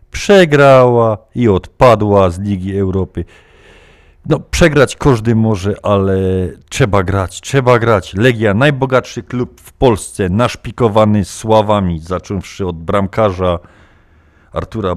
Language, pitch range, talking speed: Polish, 90-120 Hz, 105 wpm